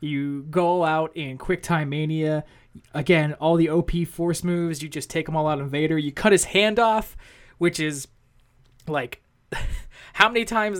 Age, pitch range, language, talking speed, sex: 20-39, 140-180 Hz, English, 185 wpm, male